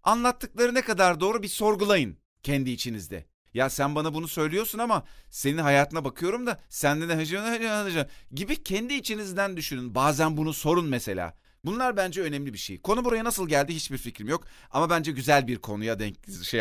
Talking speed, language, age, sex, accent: 190 wpm, Turkish, 40-59, male, native